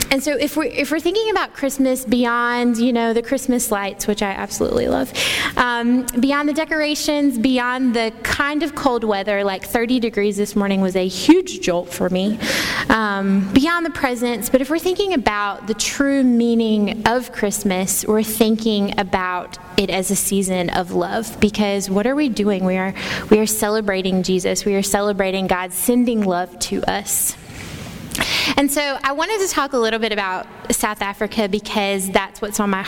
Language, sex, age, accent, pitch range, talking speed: English, female, 20-39, American, 200-255 Hz, 180 wpm